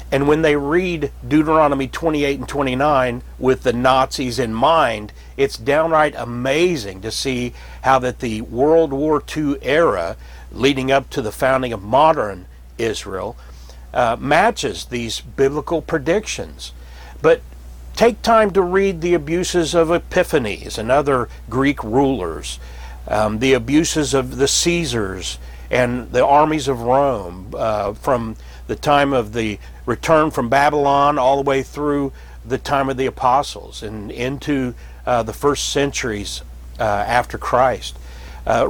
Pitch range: 110-155 Hz